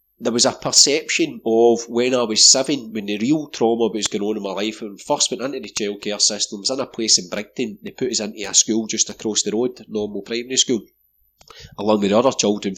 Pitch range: 110-135 Hz